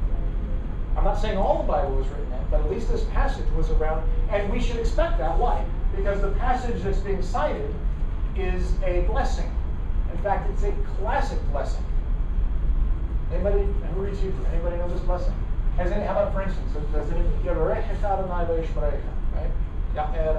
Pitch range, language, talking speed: 75-90 Hz, English, 175 wpm